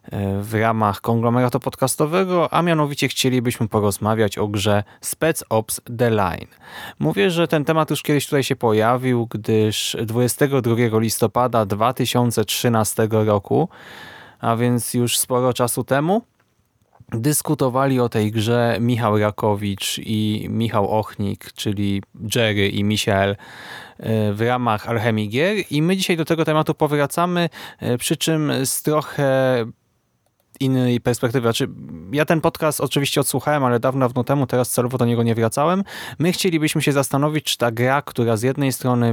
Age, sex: 20-39, male